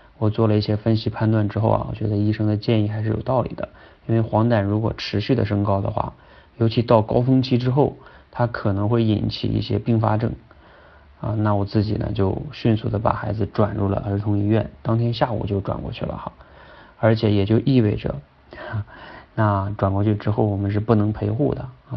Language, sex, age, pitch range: Chinese, male, 30-49, 105-120 Hz